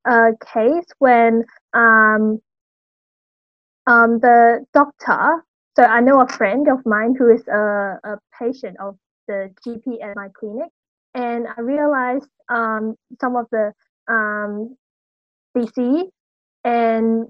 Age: 10-29